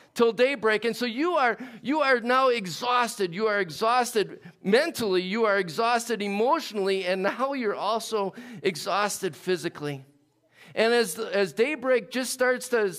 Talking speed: 145 wpm